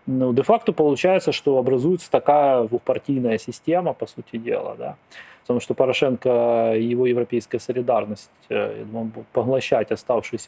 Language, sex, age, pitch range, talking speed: Russian, male, 20-39, 120-145 Hz, 135 wpm